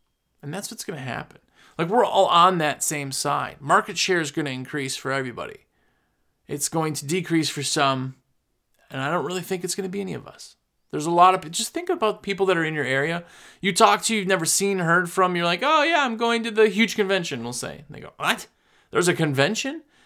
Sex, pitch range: male, 150-225 Hz